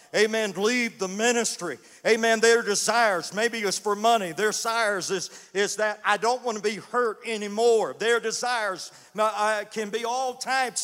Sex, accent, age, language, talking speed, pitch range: male, American, 50-69, English, 165 wpm, 180-230 Hz